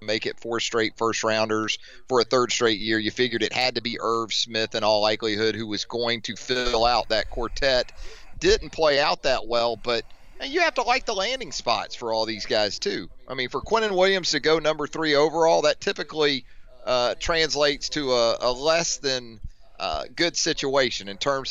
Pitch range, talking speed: 120-165 Hz, 205 wpm